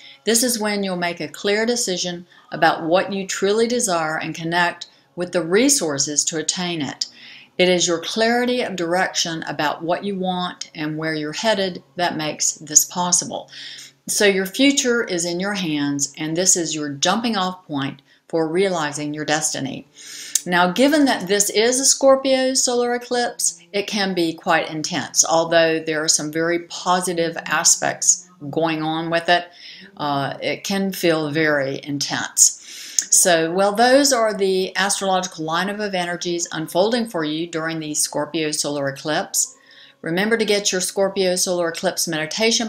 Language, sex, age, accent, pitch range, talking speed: English, female, 60-79, American, 160-200 Hz, 160 wpm